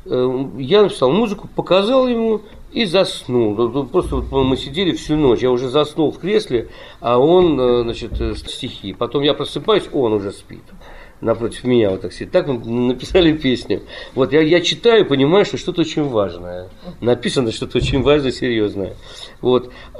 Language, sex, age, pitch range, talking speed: Russian, male, 50-69, 115-155 Hz, 155 wpm